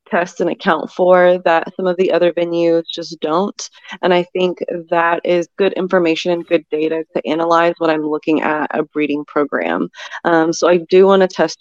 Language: English